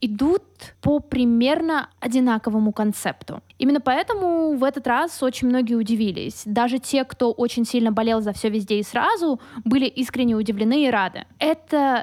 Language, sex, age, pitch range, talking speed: Russian, female, 20-39, 235-290 Hz, 150 wpm